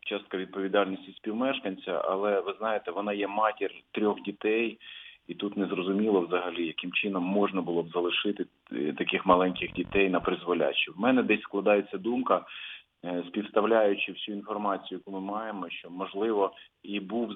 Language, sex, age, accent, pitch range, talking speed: Russian, male, 30-49, native, 95-110 Hz, 145 wpm